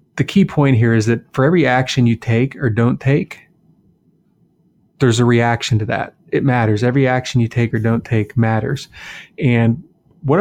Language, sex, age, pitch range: English, male, 30-49, 115-135 Hz